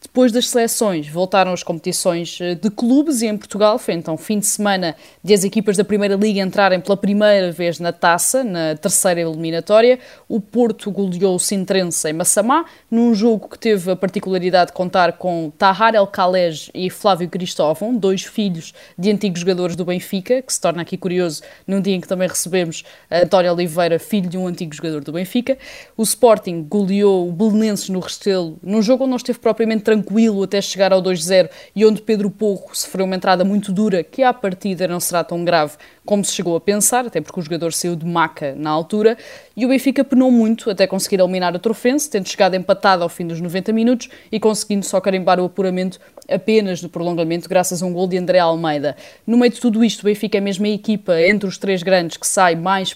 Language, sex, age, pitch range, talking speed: Portuguese, female, 20-39, 175-215 Hz, 205 wpm